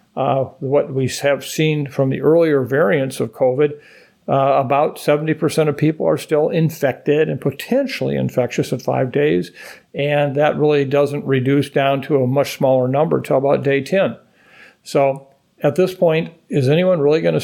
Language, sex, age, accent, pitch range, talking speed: English, male, 50-69, American, 140-165 Hz, 170 wpm